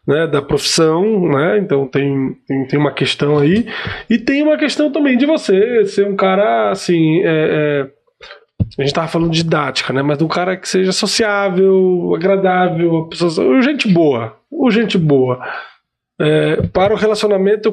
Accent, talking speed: Brazilian, 160 wpm